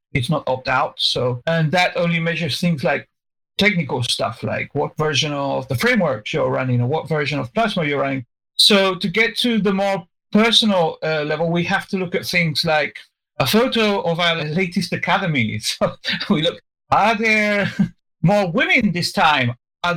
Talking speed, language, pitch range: 175 wpm, English, 140-195 Hz